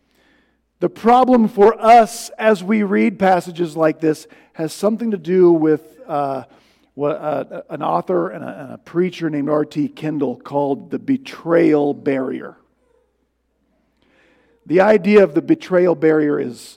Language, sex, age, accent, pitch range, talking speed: English, male, 50-69, American, 165-220 Hz, 135 wpm